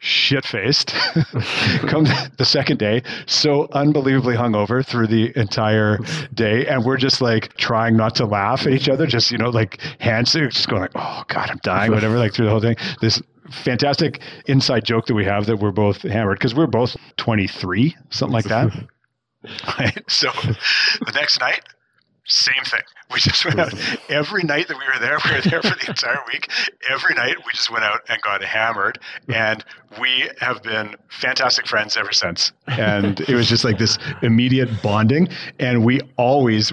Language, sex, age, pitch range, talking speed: English, male, 40-59, 105-130 Hz, 185 wpm